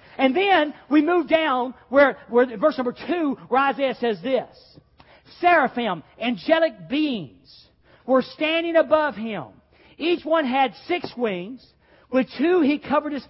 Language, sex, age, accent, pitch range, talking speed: English, male, 40-59, American, 230-295 Hz, 140 wpm